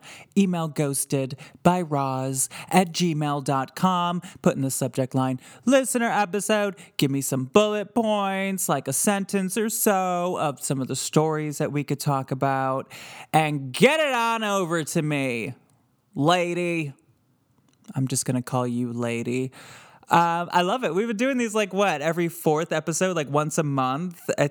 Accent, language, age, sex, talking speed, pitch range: American, English, 20-39, male, 155 wpm, 140-185 Hz